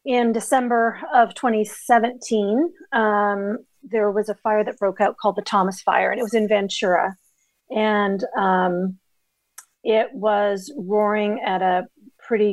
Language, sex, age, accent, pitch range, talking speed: English, female, 40-59, American, 185-215 Hz, 140 wpm